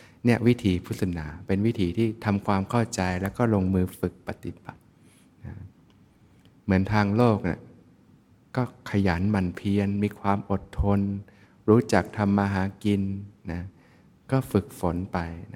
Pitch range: 95-110 Hz